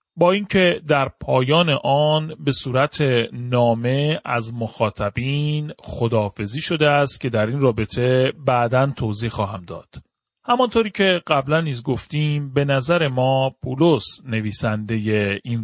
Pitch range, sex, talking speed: 115-155 Hz, male, 125 wpm